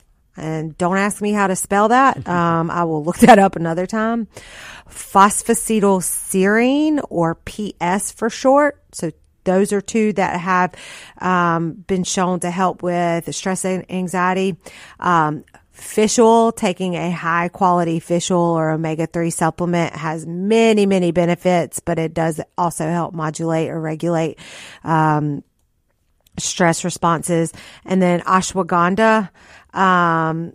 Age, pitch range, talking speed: 40-59, 165-195 Hz, 135 wpm